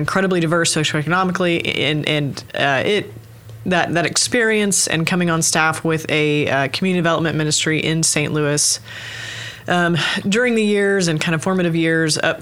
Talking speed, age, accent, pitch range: 160 wpm, 20-39, American, 140-165 Hz